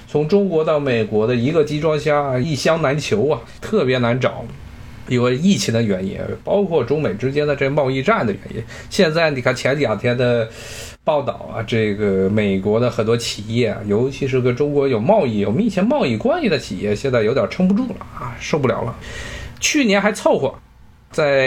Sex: male